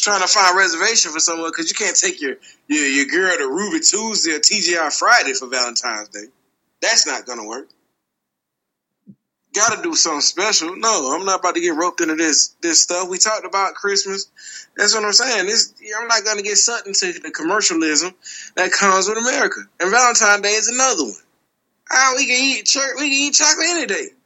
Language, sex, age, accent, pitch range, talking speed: English, male, 20-39, American, 190-320 Hz, 205 wpm